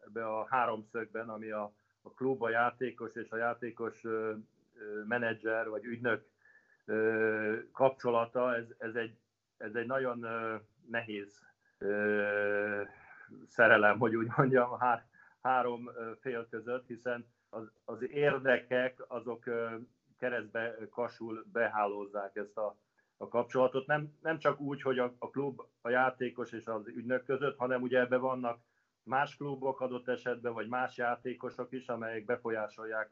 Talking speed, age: 125 wpm, 40-59